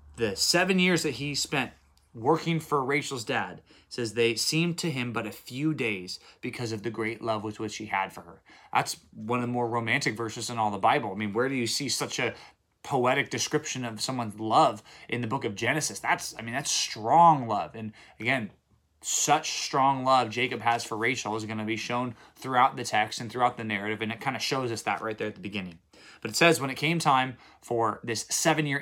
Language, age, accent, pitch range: English, 20-39, American, 110-145 Hz